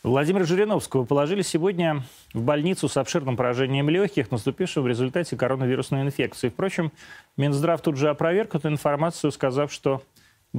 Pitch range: 130-165 Hz